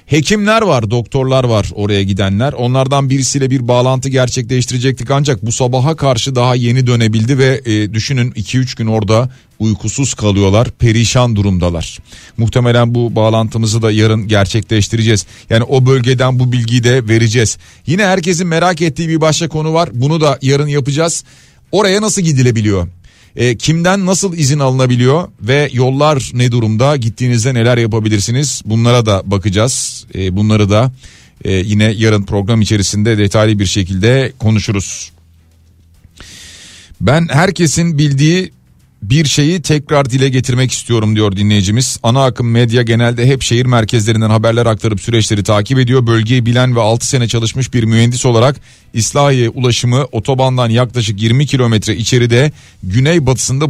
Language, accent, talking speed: Turkish, native, 135 wpm